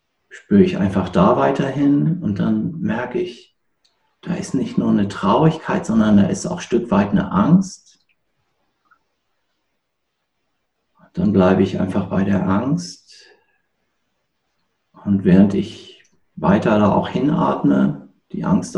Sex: male